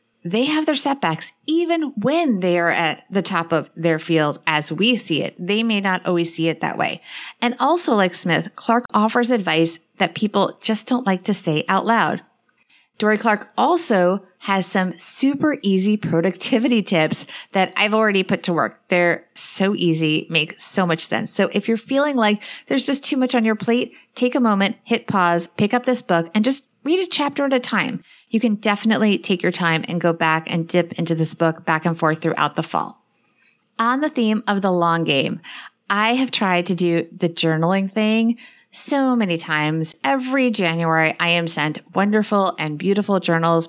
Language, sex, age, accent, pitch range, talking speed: English, female, 30-49, American, 170-235 Hz, 190 wpm